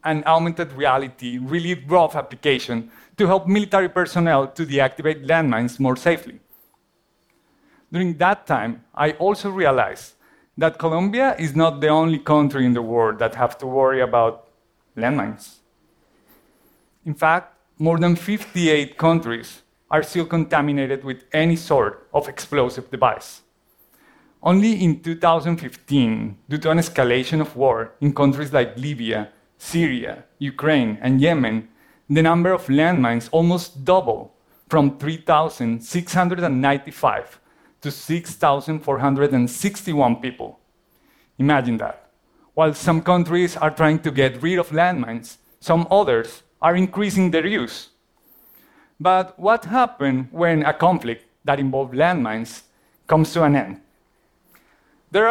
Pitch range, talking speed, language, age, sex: 130-170 Hz, 120 wpm, English, 50-69, male